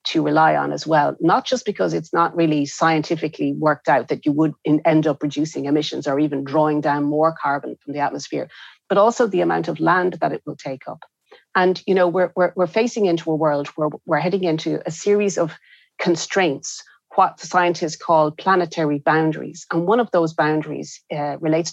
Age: 30-49